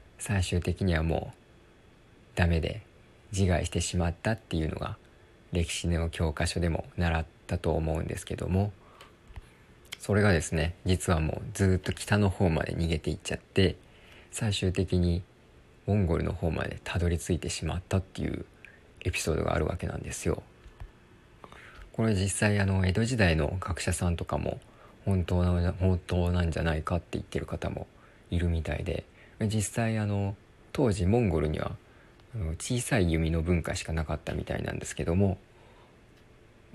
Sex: male